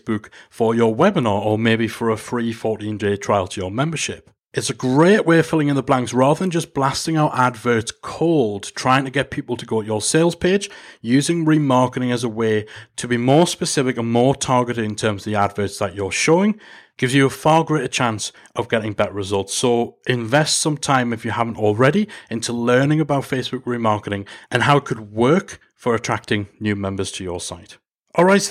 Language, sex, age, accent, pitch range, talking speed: English, male, 40-59, British, 115-160 Hz, 200 wpm